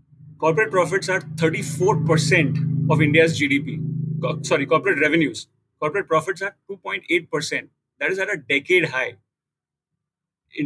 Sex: male